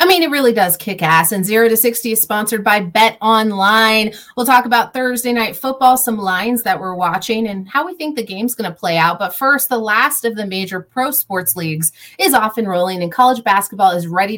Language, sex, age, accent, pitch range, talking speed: English, female, 30-49, American, 195-255 Hz, 235 wpm